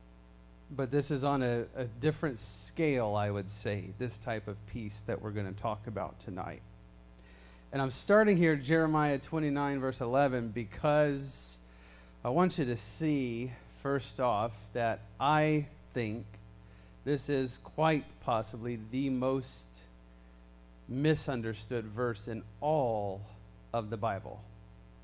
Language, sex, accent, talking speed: English, male, American, 130 wpm